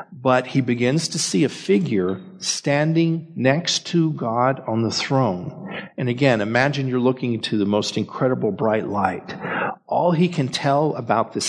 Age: 50-69